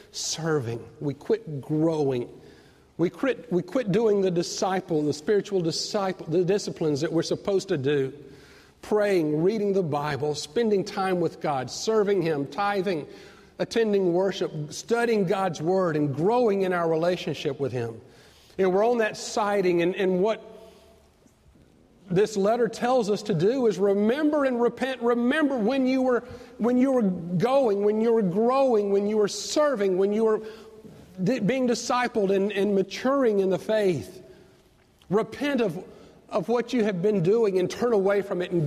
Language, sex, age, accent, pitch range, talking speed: English, male, 50-69, American, 165-215 Hz, 160 wpm